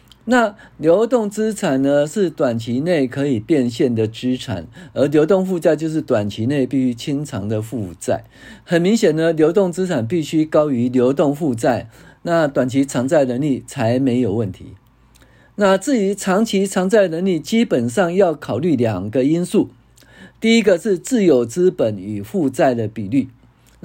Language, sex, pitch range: Chinese, male, 120-180 Hz